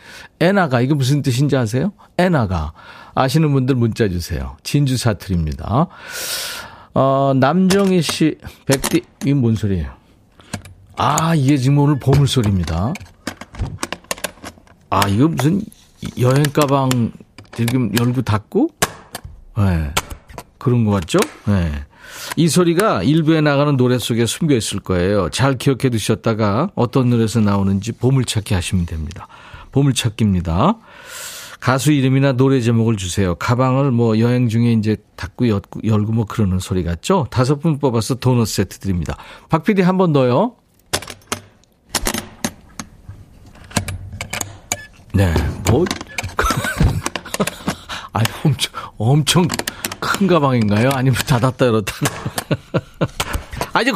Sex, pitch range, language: male, 100-140 Hz, Korean